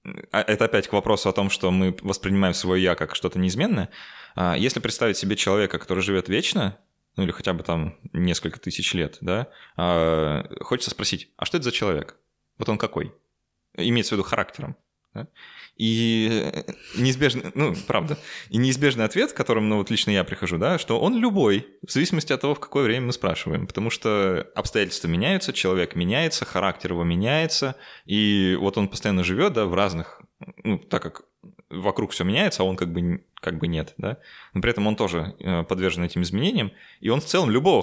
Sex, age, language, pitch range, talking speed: male, 20-39, Russian, 85-110 Hz, 180 wpm